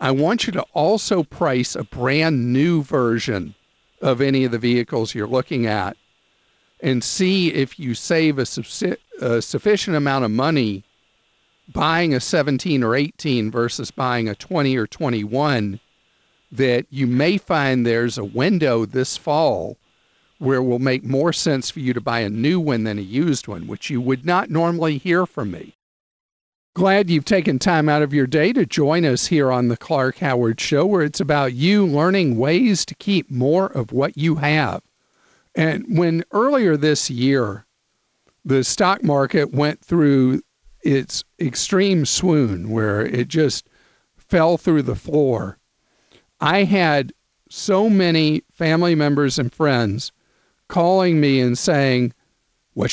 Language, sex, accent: English, male, American